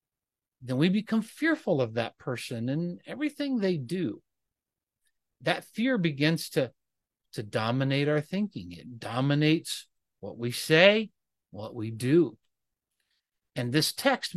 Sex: male